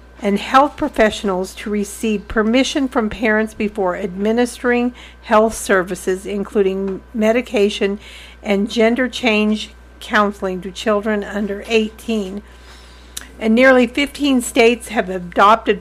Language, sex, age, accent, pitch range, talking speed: English, female, 50-69, American, 200-240 Hz, 105 wpm